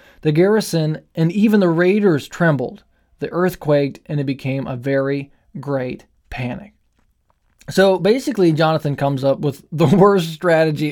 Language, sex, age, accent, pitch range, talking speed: English, male, 20-39, American, 145-205 Hz, 135 wpm